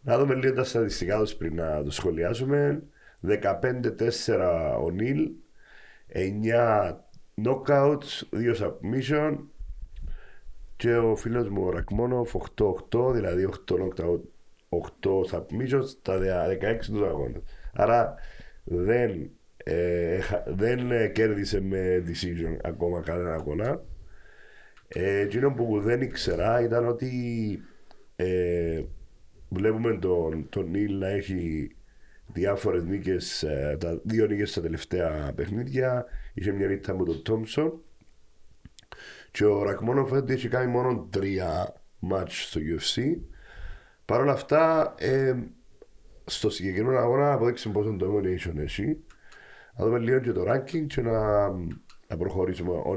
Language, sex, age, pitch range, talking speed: Greek, male, 40-59, 90-125 Hz, 115 wpm